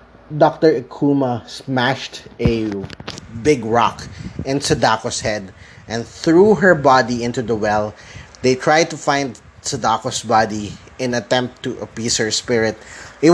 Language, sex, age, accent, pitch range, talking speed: English, male, 20-39, Filipino, 115-145 Hz, 130 wpm